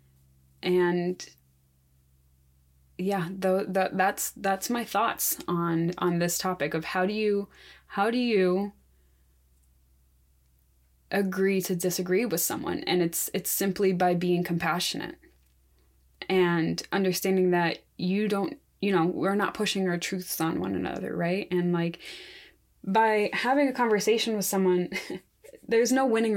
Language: English